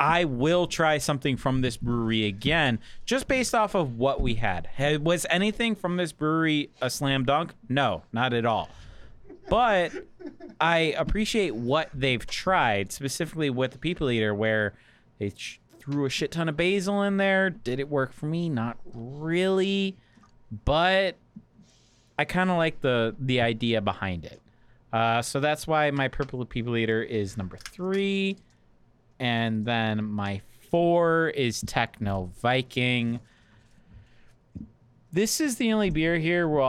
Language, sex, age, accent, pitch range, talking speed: English, male, 30-49, American, 115-160 Hz, 150 wpm